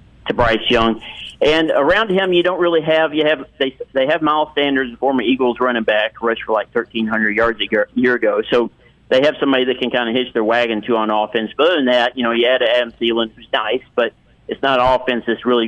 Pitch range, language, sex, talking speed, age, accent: 110-130 Hz, English, male, 245 wpm, 50-69, American